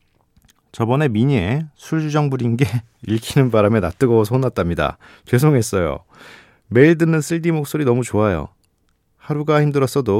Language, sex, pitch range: Korean, male, 100-140 Hz